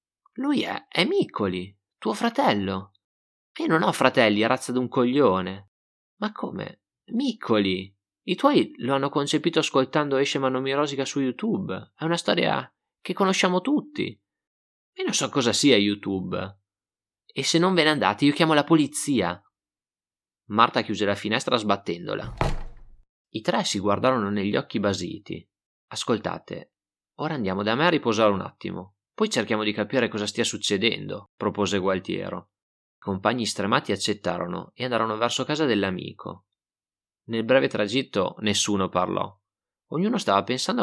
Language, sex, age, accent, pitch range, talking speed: Italian, male, 30-49, native, 100-145 Hz, 140 wpm